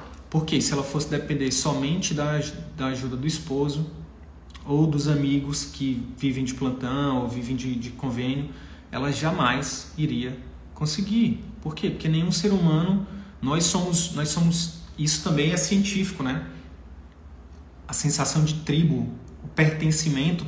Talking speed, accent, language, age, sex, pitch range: 140 wpm, Brazilian, Portuguese, 30-49, male, 125-160 Hz